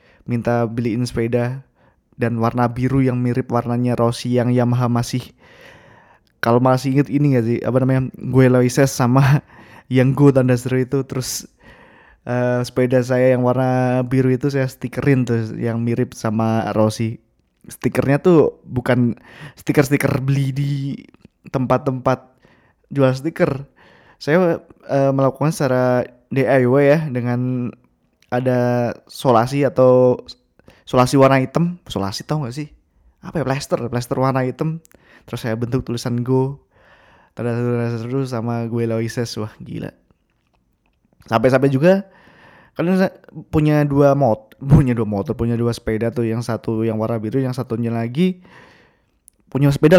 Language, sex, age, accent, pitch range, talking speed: Indonesian, male, 20-39, native, 120-135 Hz, 130 wpm